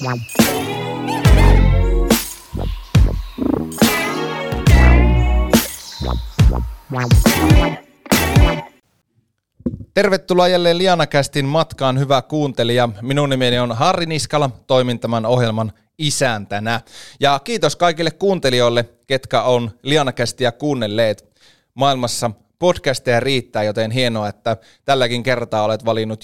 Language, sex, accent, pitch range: Finnish, male, native, 110-140 Hz